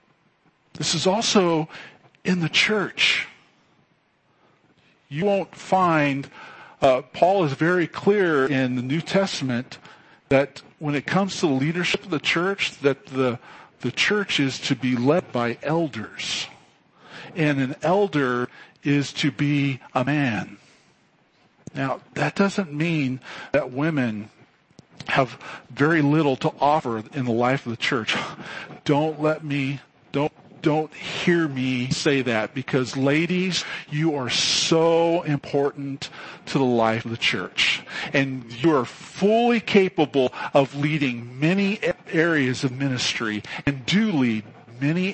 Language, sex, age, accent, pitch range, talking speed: English, male, 50-69, American, 130-165 Hz, 130 wpm